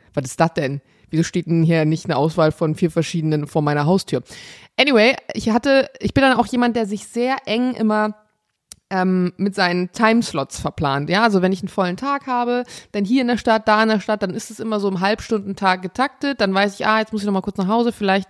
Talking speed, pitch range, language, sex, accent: 240 wpm, 185-245 Hz, German, female, German